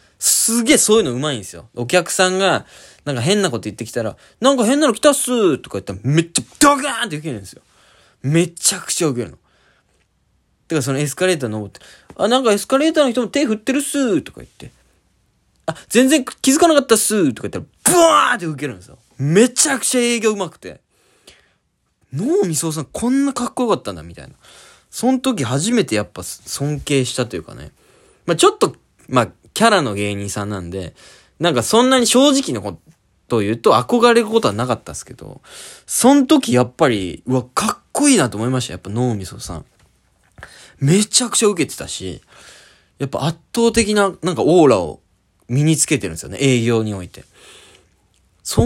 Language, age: Japanese, 20-39